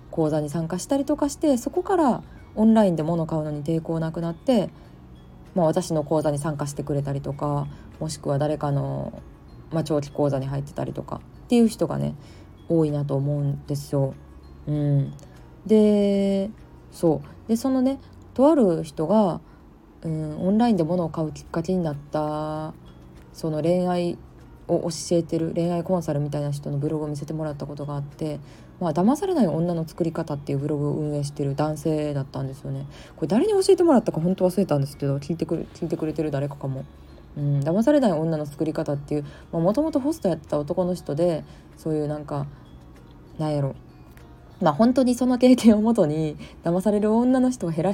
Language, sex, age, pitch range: Japanese, female, 20-39, 145-190 Hz